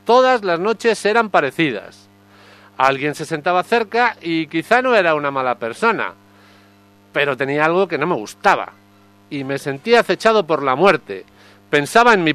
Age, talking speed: 50-69, 160 wpm